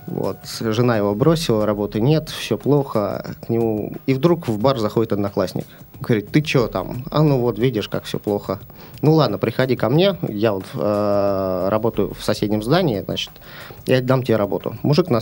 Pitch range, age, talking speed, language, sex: 110-150 Hz, 30-49, 180 wpm, Russian, male